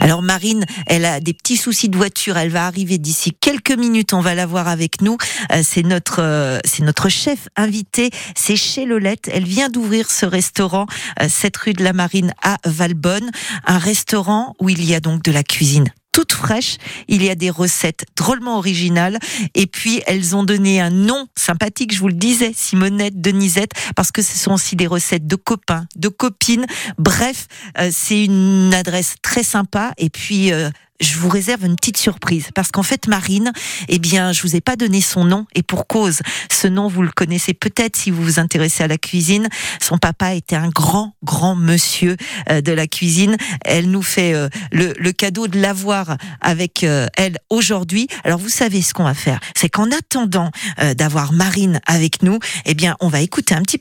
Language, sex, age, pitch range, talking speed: French, female, 40-59, 175-220 Hz, 195 wpm